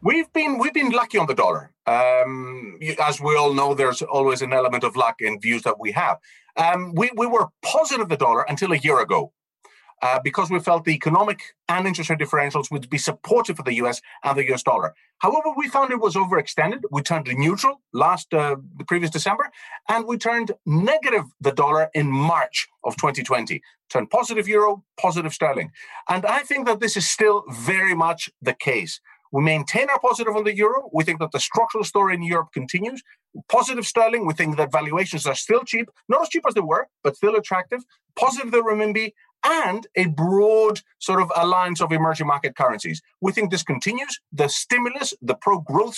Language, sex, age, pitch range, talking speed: English, male, 40-59, 155-225 Hz, 195 wpm